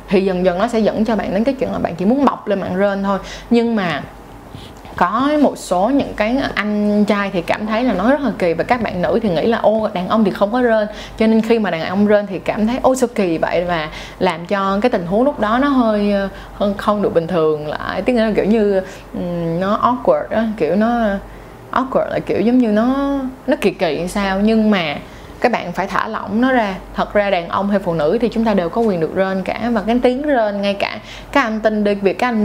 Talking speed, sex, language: 255 wpm, female, Vietnamese